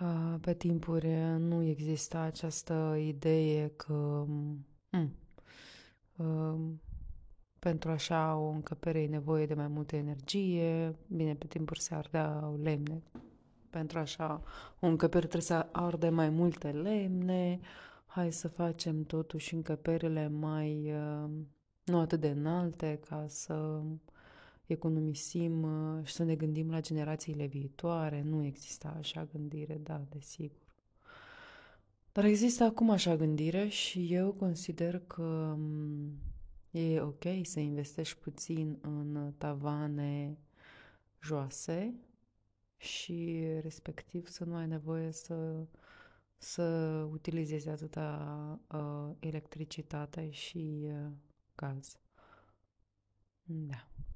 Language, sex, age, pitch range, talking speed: English, female, 20-39, 150-165 Hz, 105 wpm